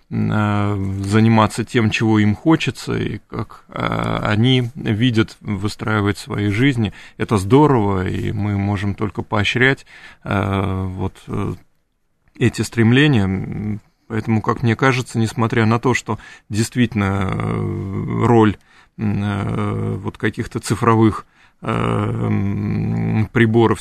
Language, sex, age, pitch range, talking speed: Russian, male, 30-49, 105-120 Hz, 90 wpm